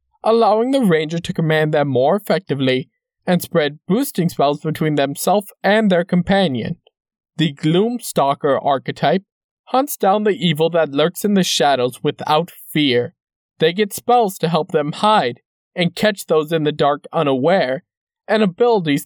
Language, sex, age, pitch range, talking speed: English, male, 20-39, 155-210 Hz, 150 wpm